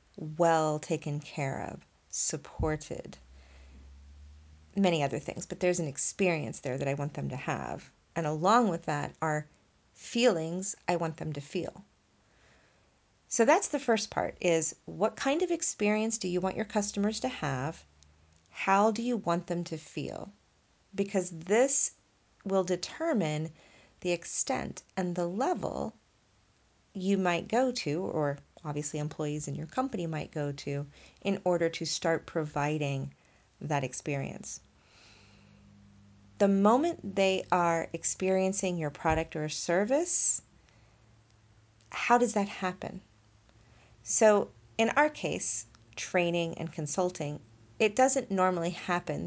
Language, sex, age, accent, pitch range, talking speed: English, female, 40-59, American, 130-190 Hz, 130 wpm